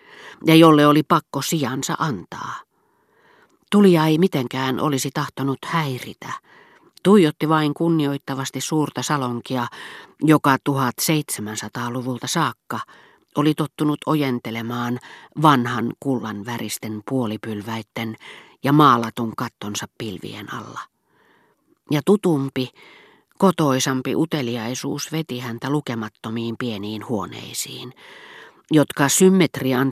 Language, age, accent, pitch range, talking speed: Finnish, 40-59, native, 120-155 Hz, 85 wpm